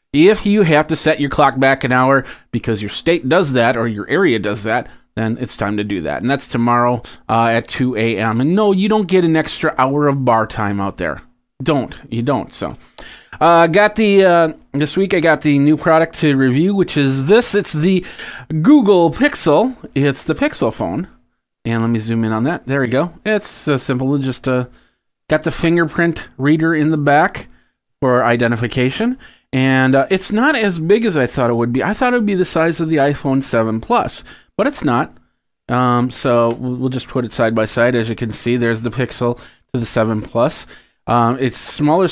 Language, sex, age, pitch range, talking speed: English, male, 30-49, 120-160 Hz, 210 wpm